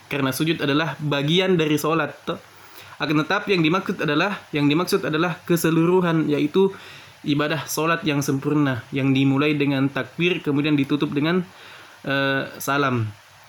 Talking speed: 130 wpm